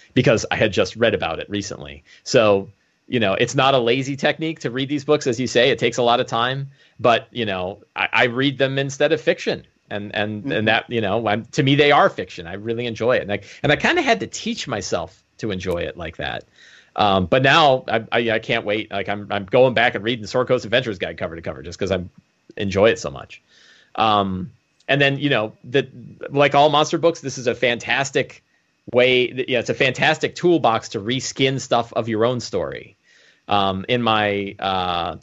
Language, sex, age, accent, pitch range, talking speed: English, male, 30-49, American, 105-130 Hz, 225 wpm